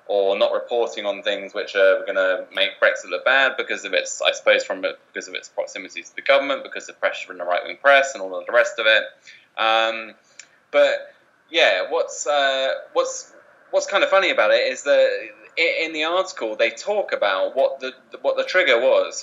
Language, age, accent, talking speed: English, 20-39, British, 215 wpm